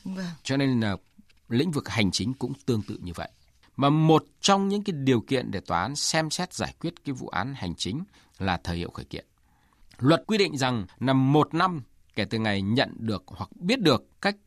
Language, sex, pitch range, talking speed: Vietnamese, male, 110-170 Hz, 215 wpm